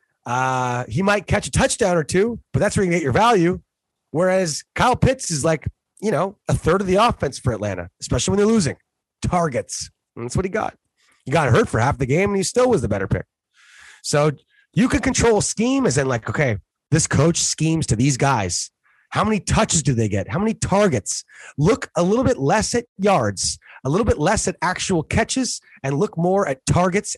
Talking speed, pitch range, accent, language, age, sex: 210 wpm, 125-190 Hz, American, English, 30-49, male